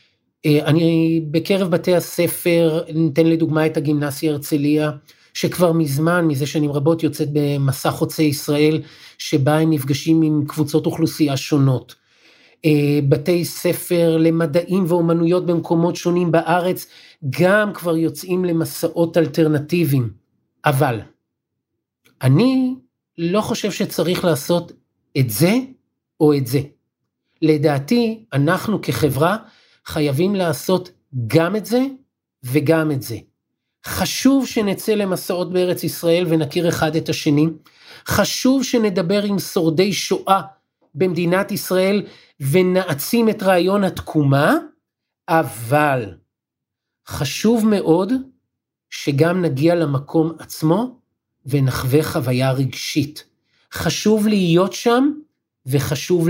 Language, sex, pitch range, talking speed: Hebrew, male, 150-180 Hz, 100 wpm